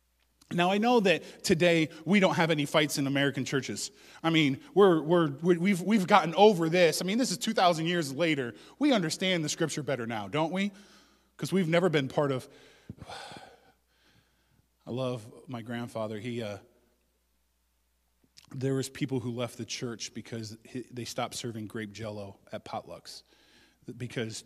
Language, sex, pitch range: English, male, 115-150 Hz